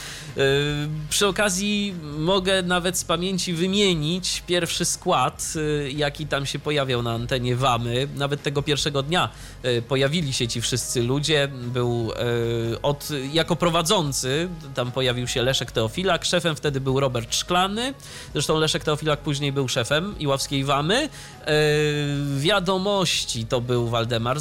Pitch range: 130-170 Hz